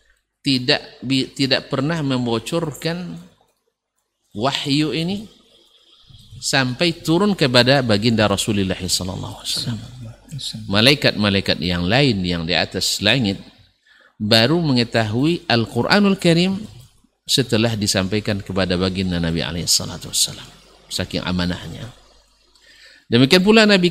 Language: Indonesian